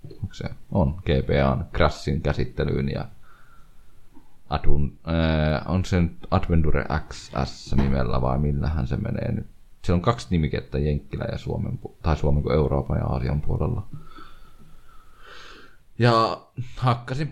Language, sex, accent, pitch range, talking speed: Finnish, male, native, 75-95 Hz, 110 wpm